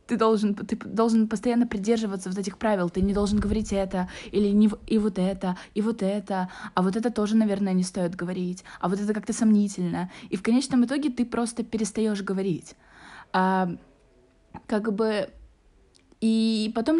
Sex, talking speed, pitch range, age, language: female, 170 wpm, 195-230 Hz, 20-39, Russian